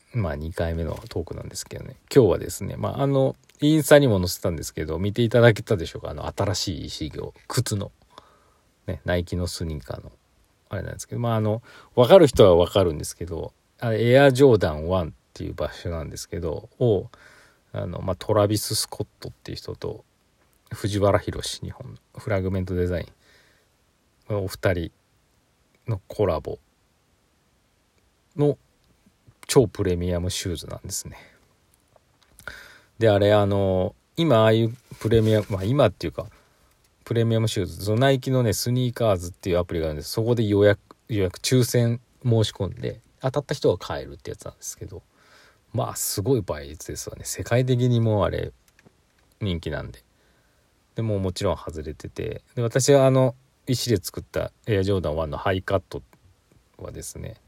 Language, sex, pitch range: Japanese, male, 95-120 Hz